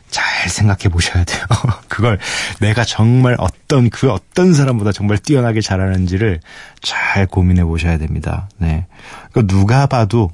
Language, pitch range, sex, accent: Korean, 95-120 Hz, male, native